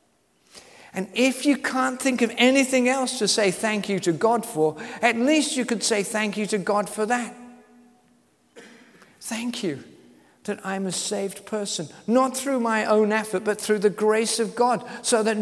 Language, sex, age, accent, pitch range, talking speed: English, male, 50-69, British, 160-235 Hz, 180 wpm